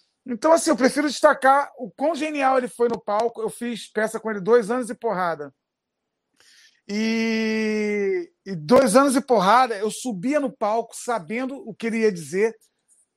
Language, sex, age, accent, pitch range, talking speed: Portuguese, male, 40-59, Brazilian, 205-255 Hz, 170 wpm